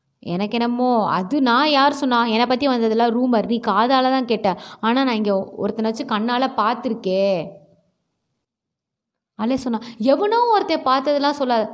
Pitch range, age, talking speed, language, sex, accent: 220-290 Hz, 20-39, 125 wpm, Tamil, female, native